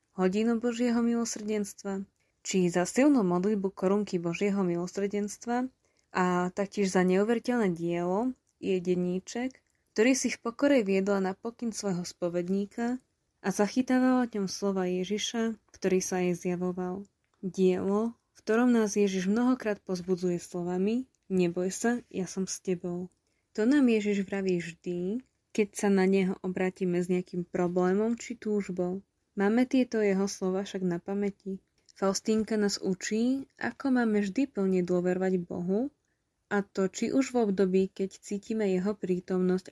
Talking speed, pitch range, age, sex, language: 135 wpm, 185-225 Hz, 20-39, female, Slovak